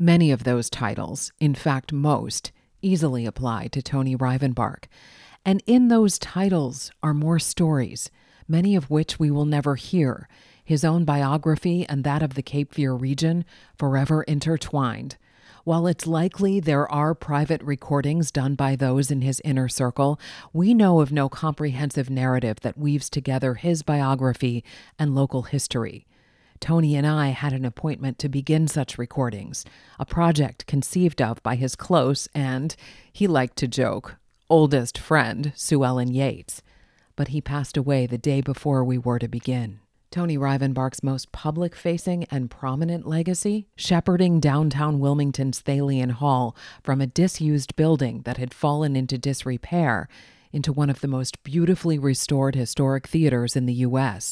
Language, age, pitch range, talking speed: English, 40-59, 130-155 Hz, 150 wpm